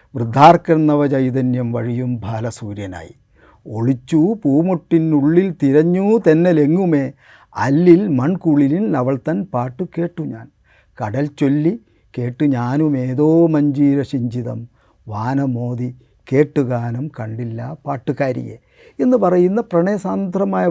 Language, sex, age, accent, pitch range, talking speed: Malayalam, male, 50-69, native, 120-155 Hz, 80 wpm